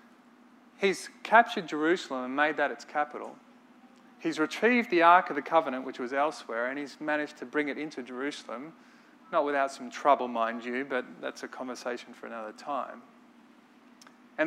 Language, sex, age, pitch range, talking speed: English, male, 30-49, 140-235 Hz, 165 wpm